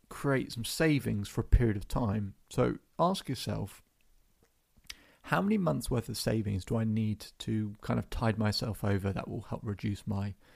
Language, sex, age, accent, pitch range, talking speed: English, male, 30-49, British, 105-130 Hz, 175 wpm